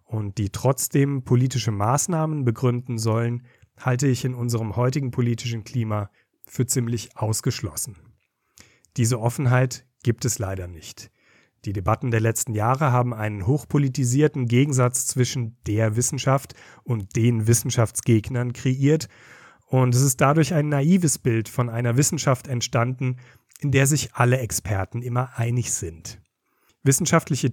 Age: 40-59